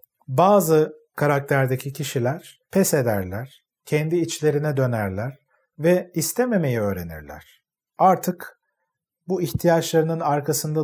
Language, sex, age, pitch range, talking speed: Turkish, male, 40-59, 130-165 Hz, 85 wpm